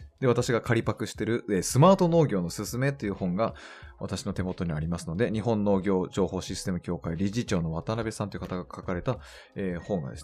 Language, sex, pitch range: Japanese, male, 90-130 Hz